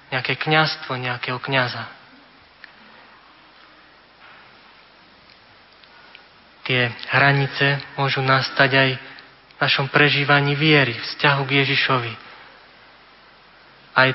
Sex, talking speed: male, 70 wpm